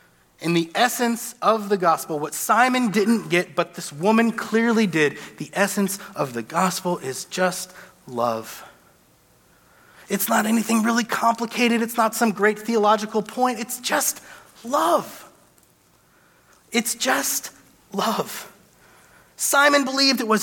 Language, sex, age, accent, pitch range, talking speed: English, male, 30-49, American, 155-230 Hz, 130 wpm